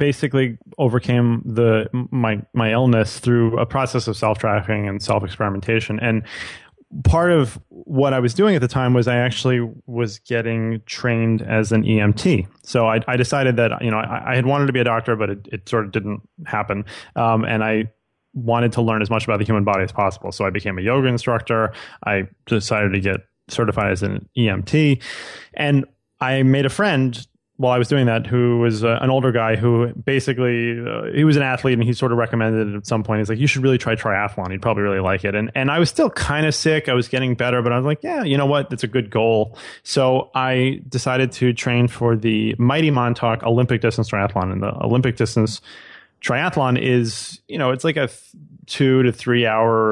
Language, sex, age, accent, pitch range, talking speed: English, male, 20-39, American, 110-130 Hz, 215 wpm